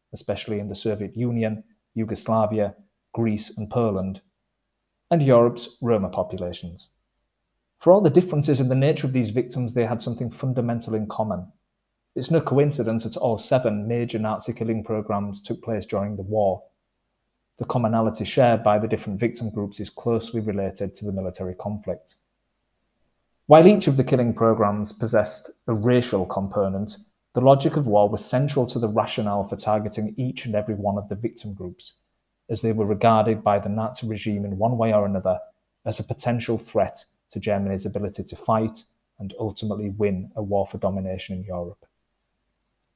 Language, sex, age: English, male, 30-49